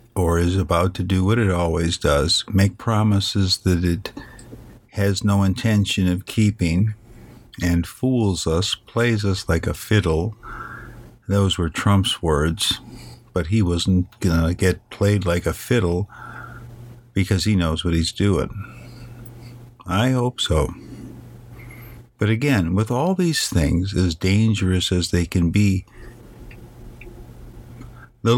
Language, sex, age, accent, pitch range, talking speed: English, male, 50-69, American, 90-120 Hz, 130 wpm